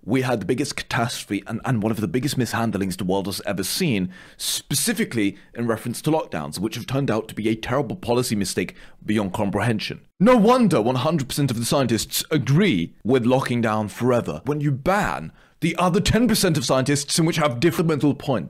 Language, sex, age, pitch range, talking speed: Italian, male, 30-49, 105-140 Hz, 190 wpm